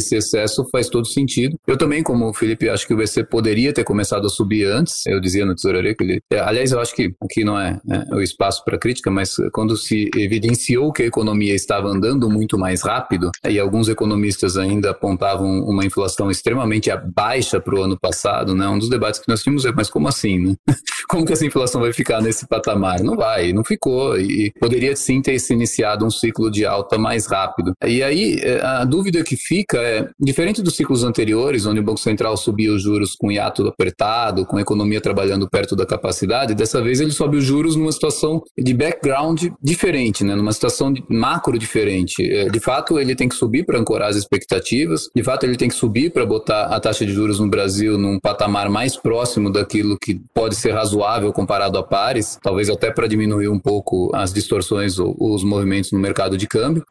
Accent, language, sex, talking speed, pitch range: Brazilian, Portuguese, male, 210 wpm, 100-130 Hz